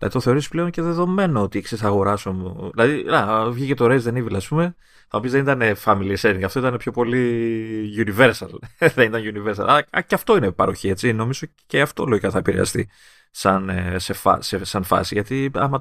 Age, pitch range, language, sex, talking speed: 30-49, 105-150 Hz, Greek, male, 205 wpm